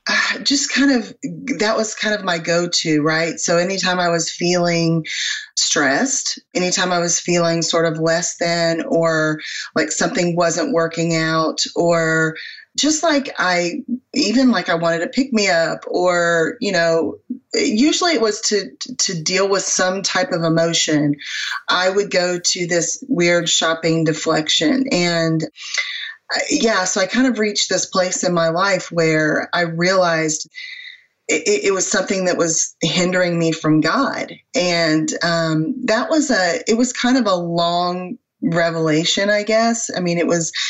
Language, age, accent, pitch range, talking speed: English, 20-39, American, 165-215 Hz, 160 wpm